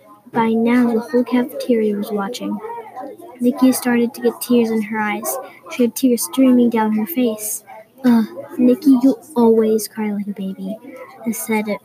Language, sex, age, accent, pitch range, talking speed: English, female, 10-29, American, 220-260 Hz, 155 wpm